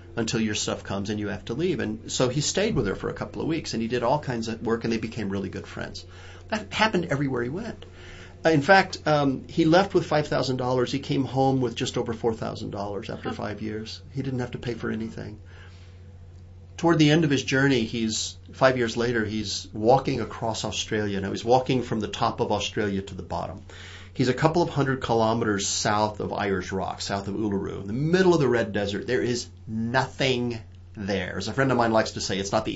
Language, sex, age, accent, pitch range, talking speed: English, male, 40-59, American, 95-125 Hz, 225 wpm